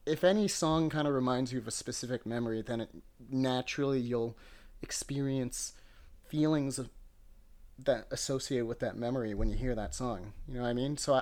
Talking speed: 180 wpm